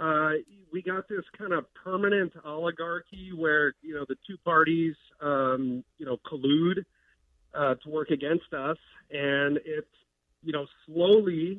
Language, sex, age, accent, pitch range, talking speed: English, male, 40-59, American, 135-165 Hz, 145 wpm